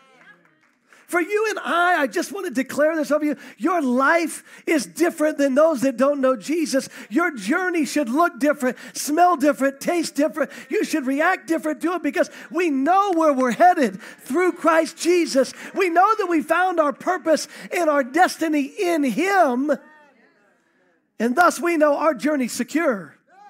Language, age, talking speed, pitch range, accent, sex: English, 40-59, 165 wpm, 265-330 Hz, American, male